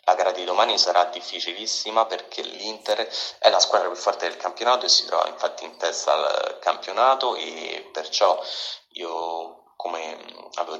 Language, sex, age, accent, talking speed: Italian, male, 30-49, native, 150 wpm